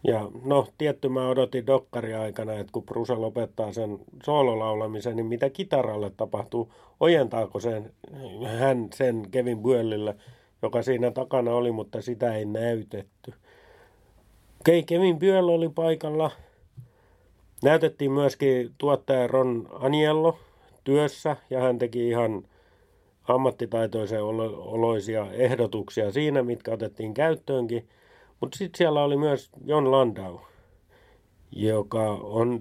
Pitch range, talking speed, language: 110-140 Hz, 115 wpm, Finnish